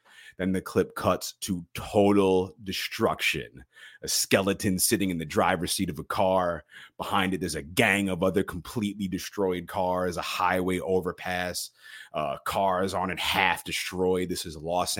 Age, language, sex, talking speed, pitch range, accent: 30-49, English, male, 155 wpm, 75-95 Hz, American